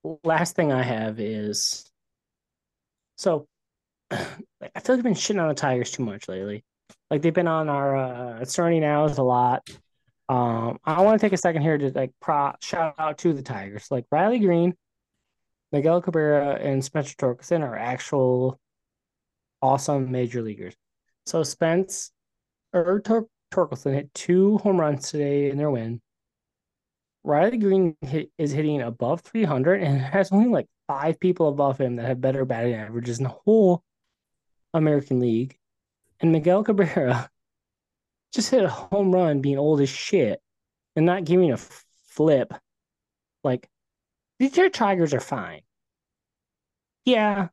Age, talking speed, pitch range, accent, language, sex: 20-39, 150 wpm, 130-180 Hz, American, English, male